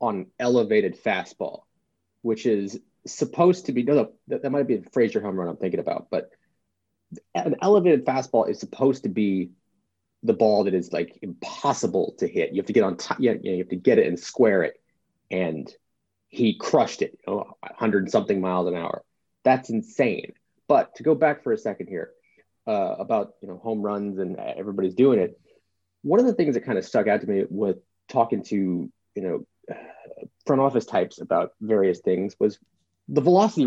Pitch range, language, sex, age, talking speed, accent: 105-140 Hz, English, male, 30-49, 195 wpm, American